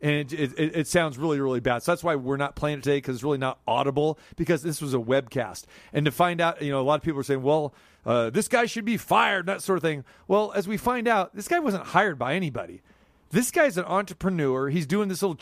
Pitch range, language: 135-175 Hz, English